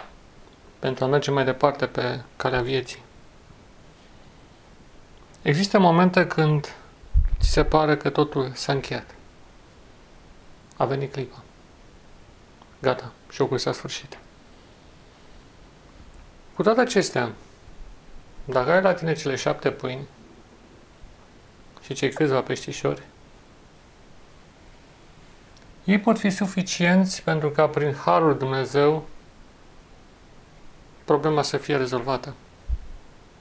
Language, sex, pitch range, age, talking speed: Romanian, male, 130-165 Hz, 40-59, 95 wpm